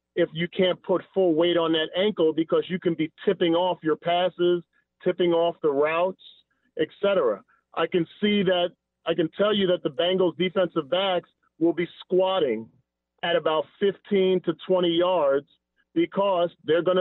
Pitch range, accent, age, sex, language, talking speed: 165-185 Hz, American, 40-59, male, English, 170 wpm